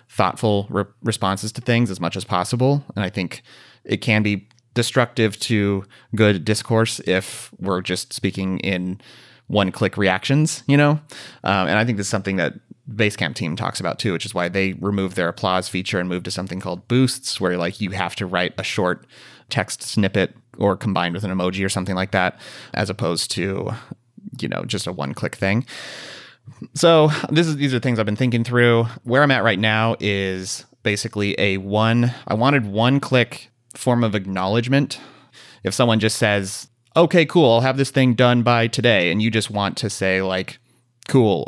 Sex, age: male, 30-49